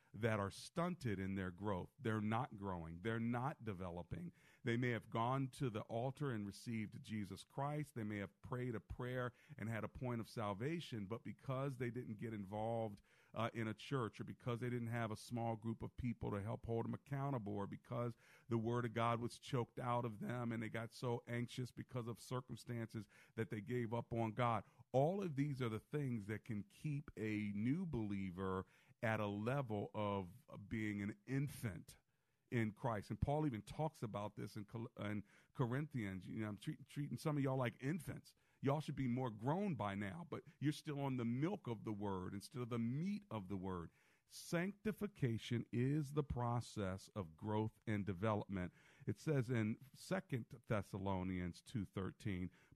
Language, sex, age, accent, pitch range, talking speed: English, male, 40-59, American, 105-135 Hz, 185 wpm